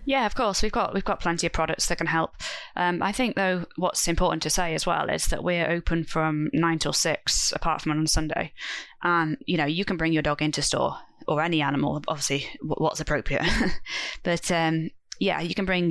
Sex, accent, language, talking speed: female, British, English, 215 wpm